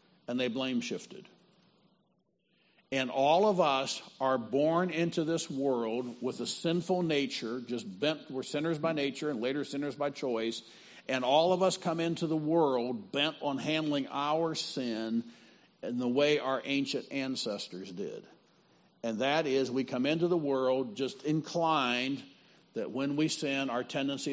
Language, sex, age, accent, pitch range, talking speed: English, male, 50-69, American, 130-155 Hz, 160 wpm